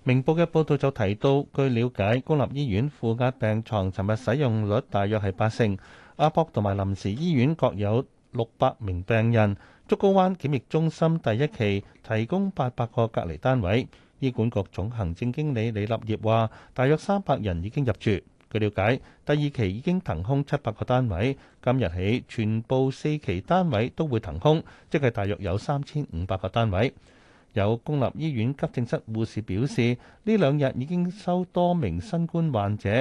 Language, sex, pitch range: Chinese, male, 105-145 Hz